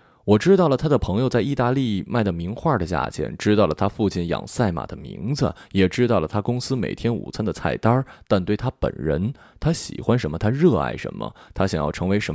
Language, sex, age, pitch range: Chinese, male, 20-39, 90-120 Hz